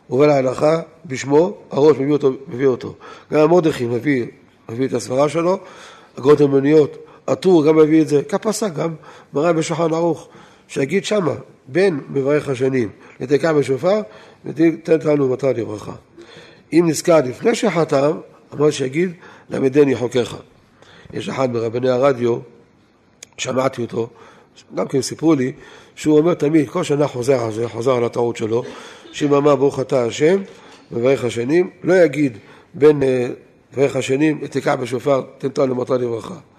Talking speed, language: 130 wpm, Hebrew